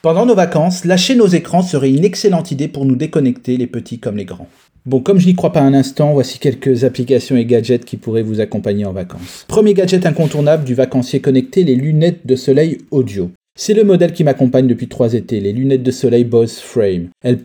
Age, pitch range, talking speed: 30-49, 125-165 Hz, 215 wpm